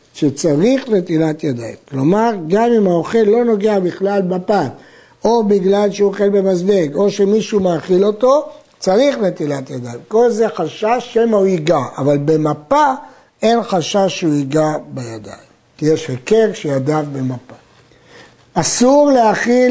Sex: male